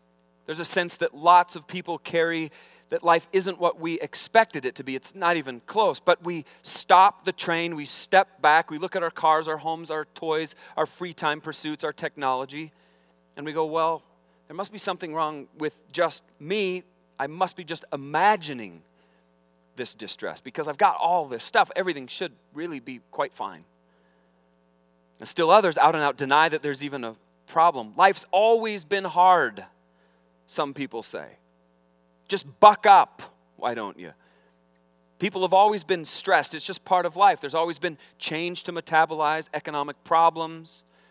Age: 40-59